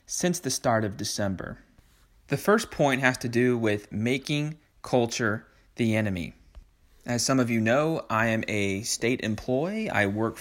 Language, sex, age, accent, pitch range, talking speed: English, male, 30-49, American, 100-120 Hz, 160 wpm